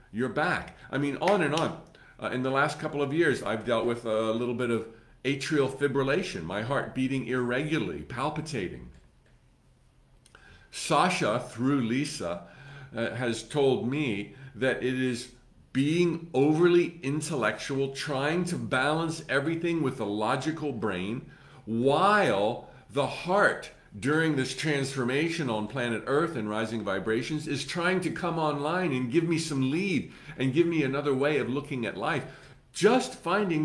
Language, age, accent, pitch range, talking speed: English, 50-69, American, 125-165 Hz, 145 wpm